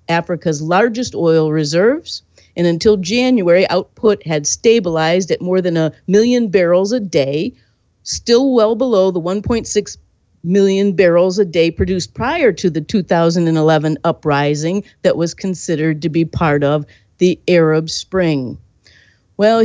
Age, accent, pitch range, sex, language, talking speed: 50-69, American, 160-235 Hz, female, English, 135 wpm